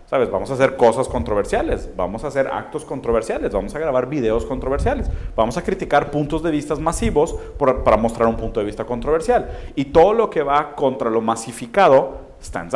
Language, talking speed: Spanish, 190 wpm